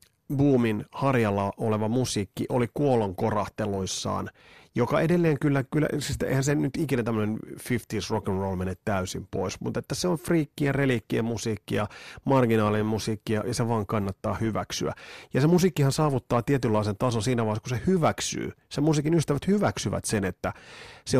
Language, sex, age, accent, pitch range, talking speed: Finnish, male, 30-49, native, 105-135 Hz, 150 wpm